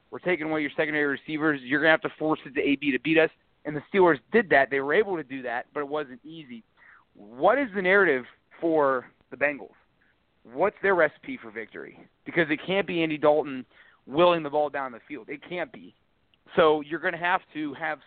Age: 30-49